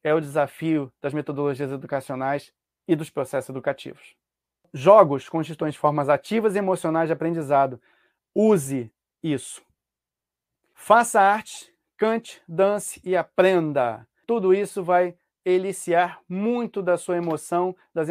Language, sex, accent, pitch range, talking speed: Portuguese, male, Brazilian, 150-185 Hz, 115 wpm